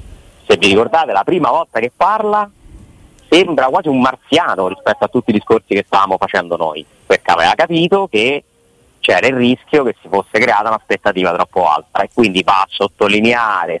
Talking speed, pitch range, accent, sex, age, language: 175 wpm, 100-130 Hz, native, male, 30-49, Italian